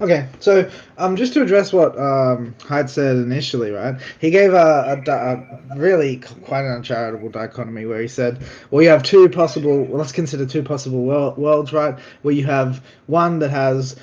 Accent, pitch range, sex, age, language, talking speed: Australian, 135-200 Hz, male, 20-39, English, 190 wpm